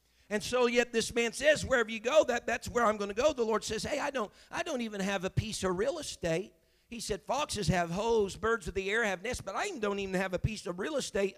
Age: 50-69